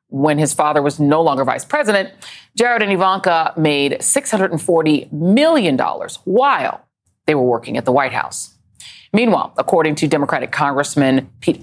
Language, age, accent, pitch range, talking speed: English, 40-59, American, 145-200 Hz, 145 wpm